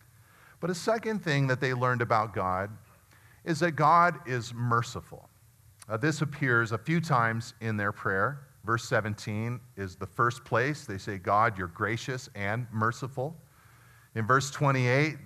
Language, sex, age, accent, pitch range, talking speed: English, male, 40-59, American, 110-145 Hz, 150 wpm